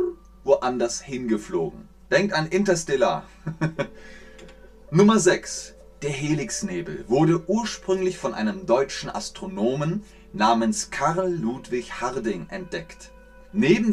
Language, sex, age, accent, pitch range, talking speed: German, male, 30-49, German, 140-190 Hz, 90 wpm